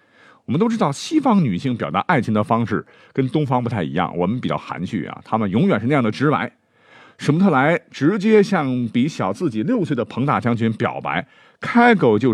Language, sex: Chinese, male